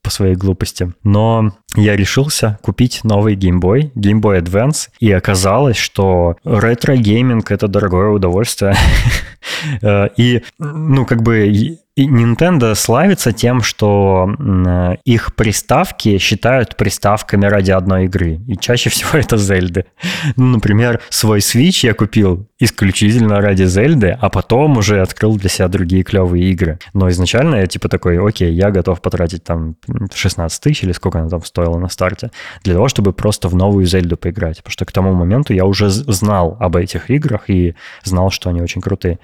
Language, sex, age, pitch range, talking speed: Russian, male, 20-39, 90-110 Hz, 155 wpm